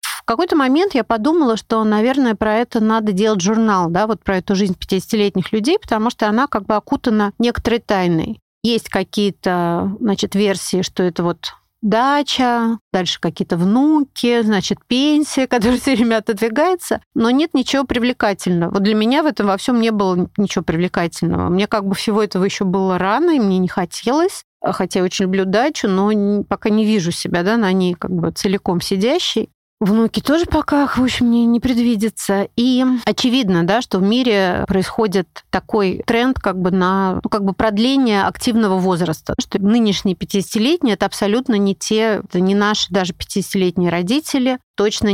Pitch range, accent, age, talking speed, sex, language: 190-235 Hz, native, 40-59, 170 wpm, female, Russian